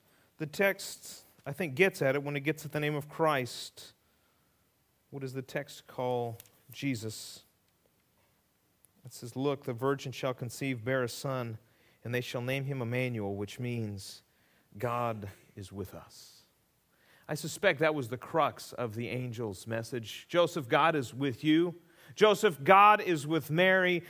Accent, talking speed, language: American, 155 wpm, English